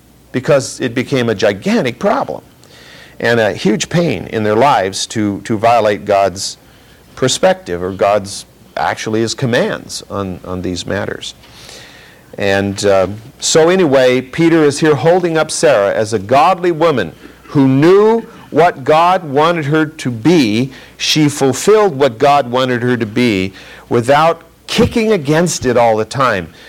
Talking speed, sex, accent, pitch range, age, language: 145 wpm, male, American, 100-140 Hz, 50-69, English